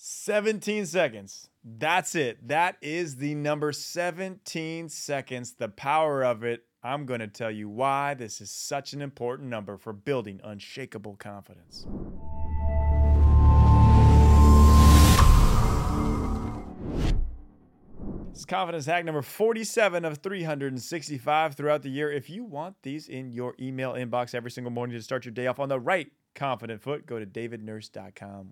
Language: English